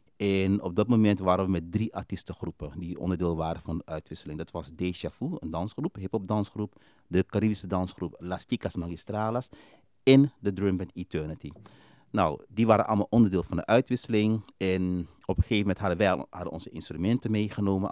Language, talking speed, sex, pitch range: Dutch, 170 wpm, male, 90-115 Hz